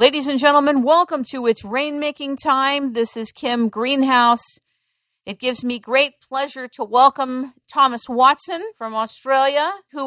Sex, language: female, English